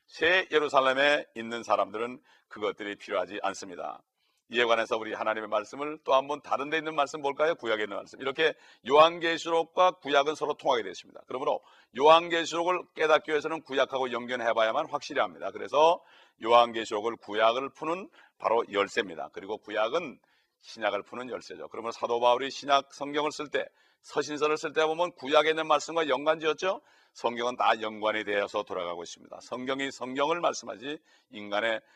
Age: 40-59